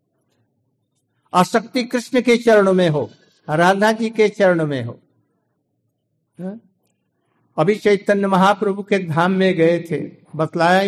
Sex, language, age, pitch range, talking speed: male, Hindi, 60-79, 160-205 Hz, 115 wpm